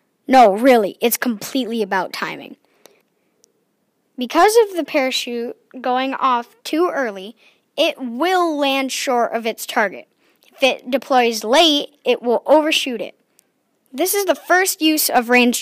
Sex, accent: female, American